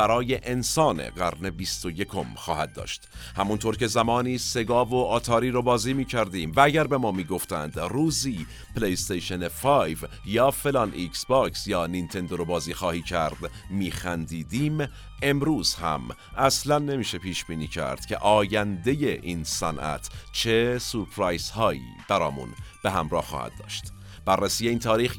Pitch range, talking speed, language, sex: 90-120 Hz, 135 wpm, Persian, male